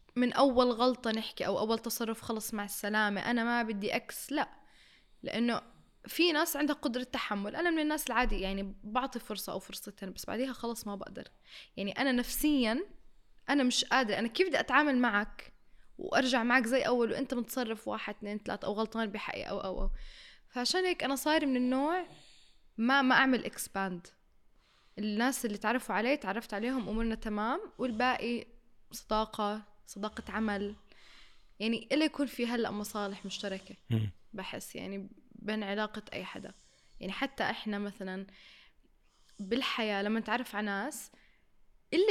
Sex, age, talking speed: female, 10-29, 150 wpm